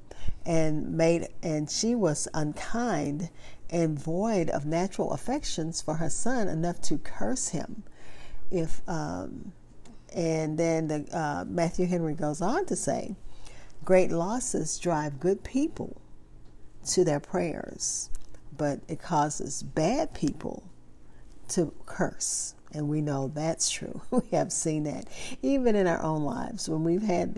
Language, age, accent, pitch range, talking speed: English, 50-69, American, 150-185 Hz, 135 wpm